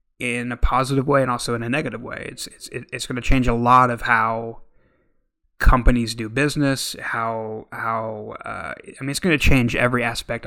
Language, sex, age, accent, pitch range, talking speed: English, male, 20-39, American, 115-130 Hz, 195 wpm